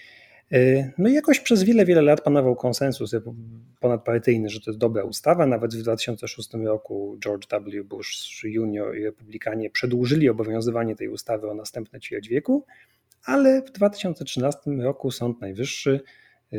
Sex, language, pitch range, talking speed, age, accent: male, Polish, 115-170 Hz, 140 wpm, 30-49, native